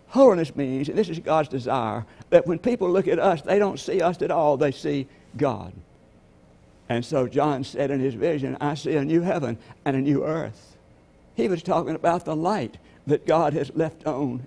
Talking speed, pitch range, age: 205 wpm, 110-140 Hz, 60-79